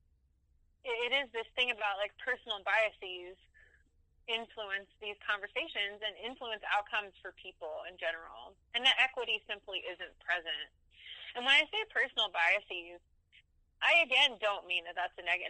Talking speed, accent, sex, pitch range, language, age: 145 wpm, American, female, 190-250 Hz, English, 20-39